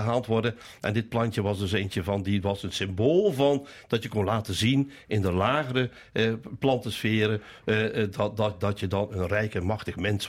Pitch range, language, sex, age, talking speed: 100-130 Hz, Dutch, male, 60-79, 205 wpm